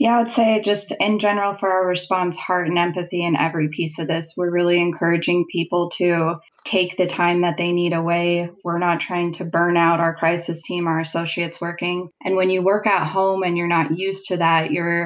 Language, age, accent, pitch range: English, 20-39, American, 165-180 Hz